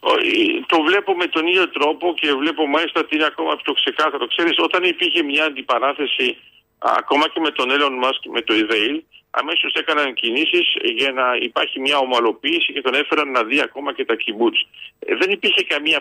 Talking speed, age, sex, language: 180 wpm, 50-69, male, Greek